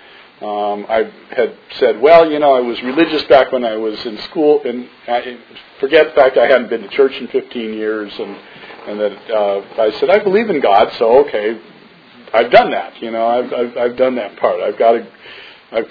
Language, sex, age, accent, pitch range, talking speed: English, male, 50-69, American, 120-185 Hz, 210 wpm